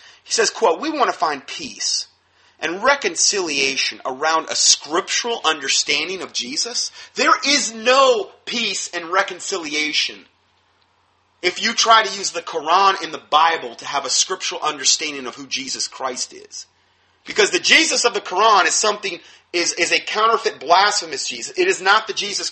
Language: English